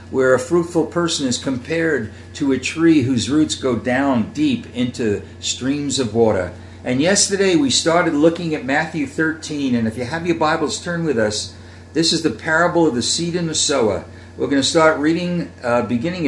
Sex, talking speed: male, 190 wpm